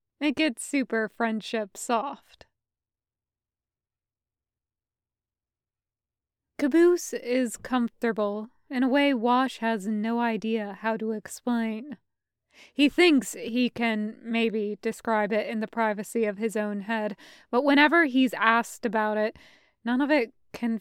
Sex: female